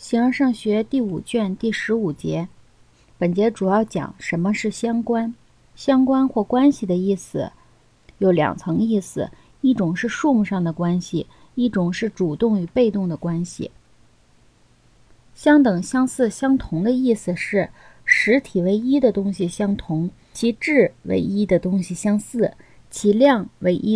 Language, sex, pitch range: Chinese, female, 190-250 Hz